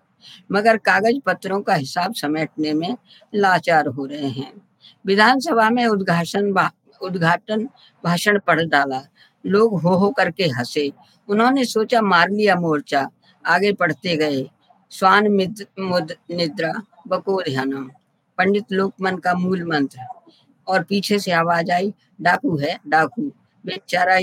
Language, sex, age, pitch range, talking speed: Hindi, female, 50-69, 175-215 Hz, 120 wpm